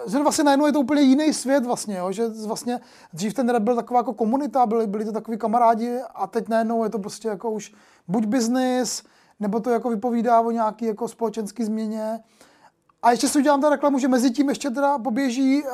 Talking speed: 200 wpm